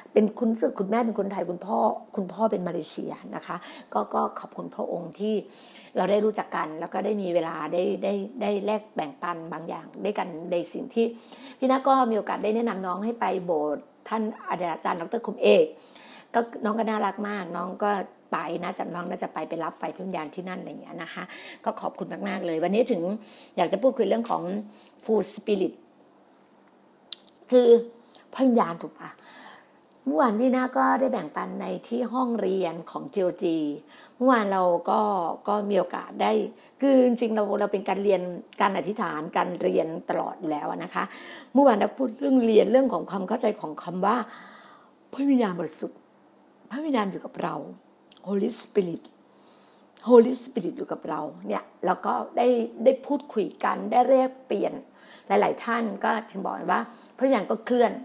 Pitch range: 190-245 Hz